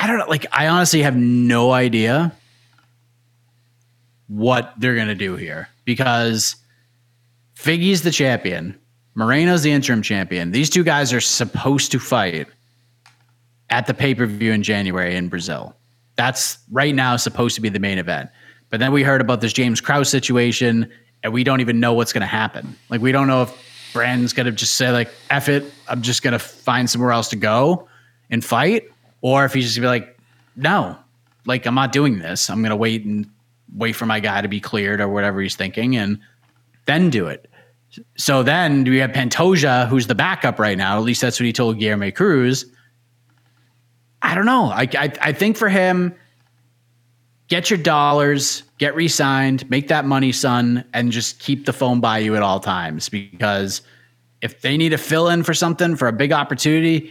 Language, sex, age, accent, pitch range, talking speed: English, male, 30-49, American, 115-135 Hz, 190 wpm